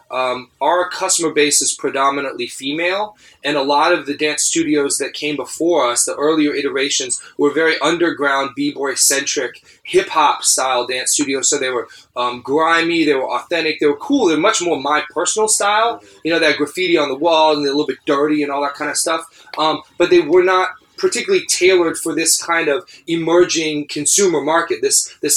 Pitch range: 140-210 Hz